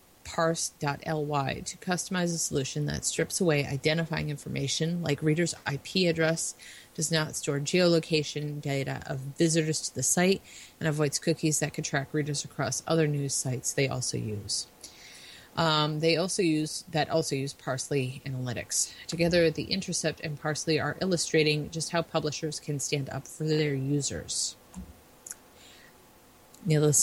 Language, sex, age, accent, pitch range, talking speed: English, female, 30-49, American, 145-165 Hz, 140 wpm